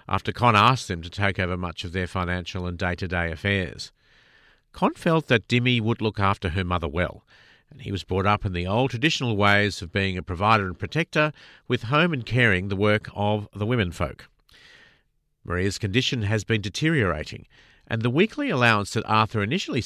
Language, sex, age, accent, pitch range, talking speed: English, male, 50-69, Australian, 95-125 Hz, 195 wpm